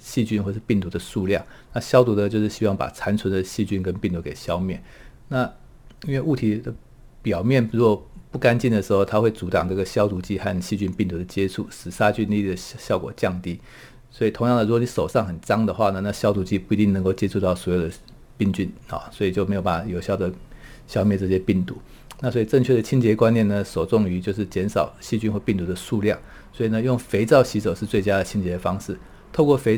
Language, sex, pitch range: Chinese, male, 95-115 Hz